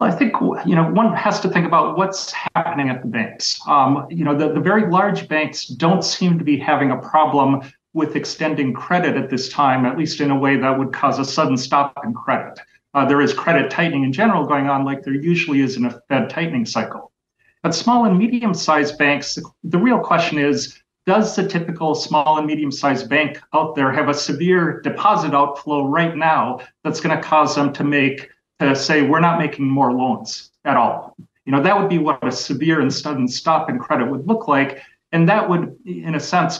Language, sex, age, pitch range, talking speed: English, male, 40-59, 140-170 Hz, 215 wpm